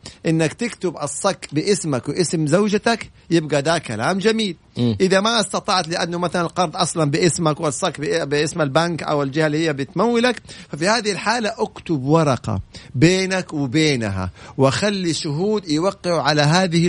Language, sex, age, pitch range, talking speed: Arabic, male, 50-69, 145-190 Hz, 135 wpm